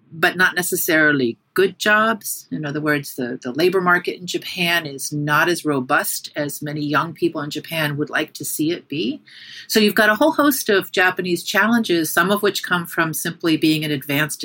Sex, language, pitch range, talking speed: female, English, 150-185 Hz, 200 wpm